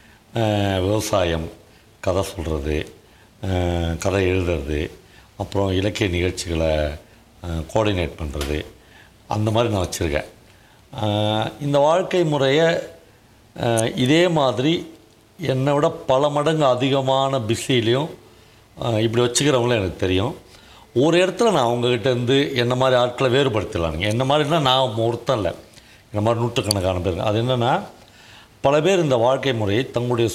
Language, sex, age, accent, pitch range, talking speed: Tamil, male, 60-79, native, 95-125 Hz, 105 wpm